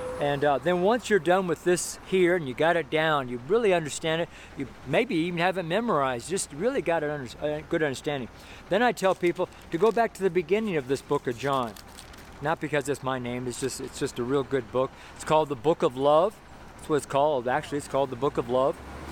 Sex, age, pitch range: male, 50-69, 140-185 Hz